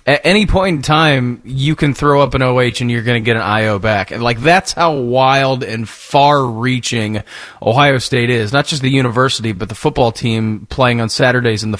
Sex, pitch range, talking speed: male, 120-155 Hz, 215 wpm